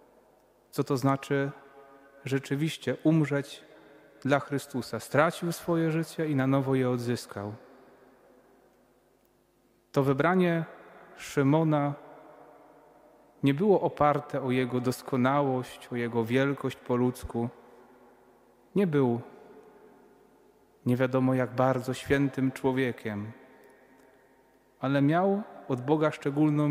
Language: Polish